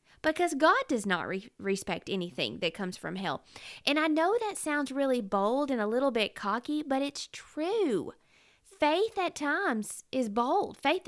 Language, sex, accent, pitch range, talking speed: English, female, American, 195-280 Hz, 170 wpm